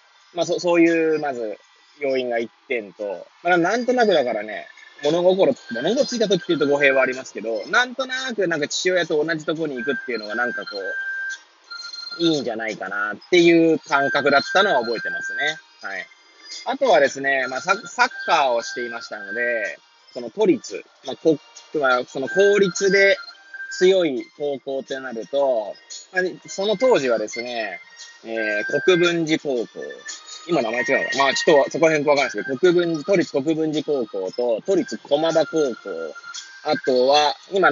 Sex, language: male, Japanese